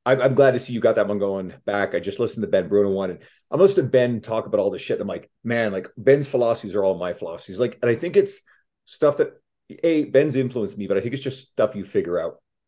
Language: English